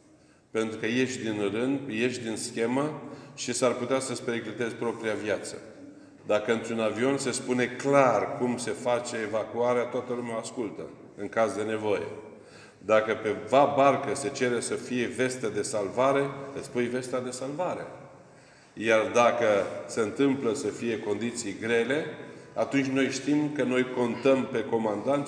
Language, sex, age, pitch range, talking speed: Romanian, male, 40-59, 115-140 Hz, 150 wpm